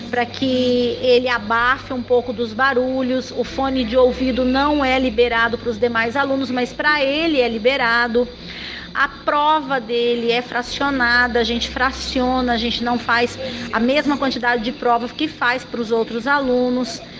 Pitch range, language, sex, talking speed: 240-290 Hz, Portuguese, female, 165 wpm